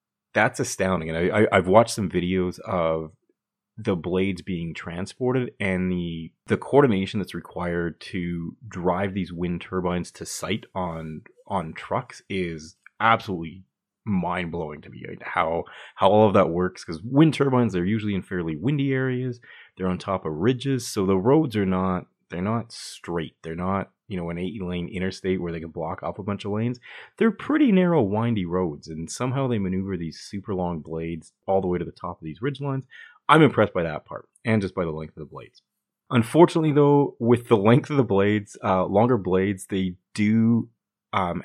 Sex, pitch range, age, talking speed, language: male, 90-115 Hz, 30-49, 190 wpm, English